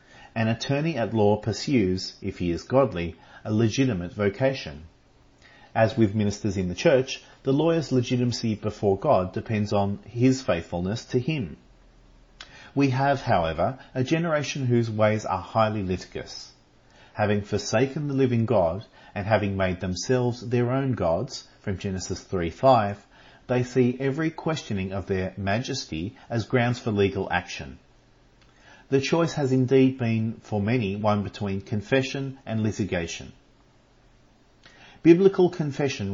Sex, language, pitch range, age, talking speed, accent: male, English, 100-130 Hz, 40-59, 135 wpm, Australian